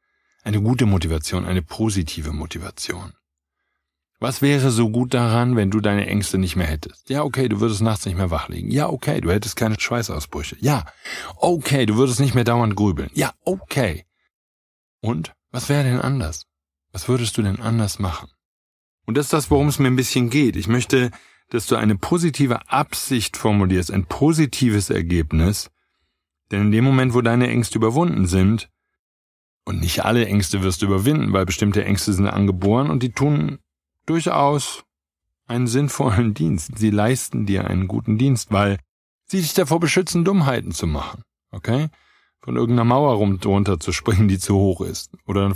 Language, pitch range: German, 95-125 Hz